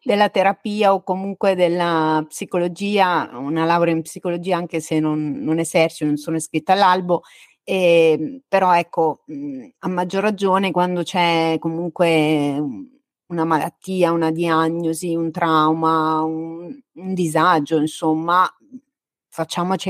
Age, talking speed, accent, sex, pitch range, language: 30-49, 115 wpm, native, female, 155-190 Hz, Italian